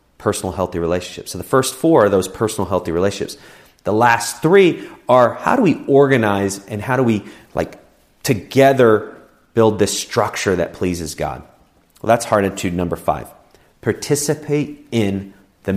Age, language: 30-49, English